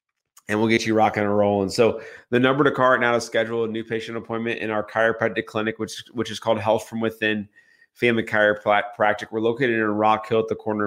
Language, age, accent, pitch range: English, 30-49, American, 110-125 Hz